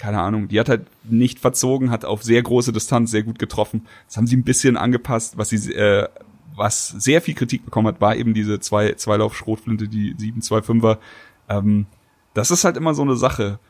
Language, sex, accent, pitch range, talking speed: German, male, German, 105-120 Hz, 195 wpm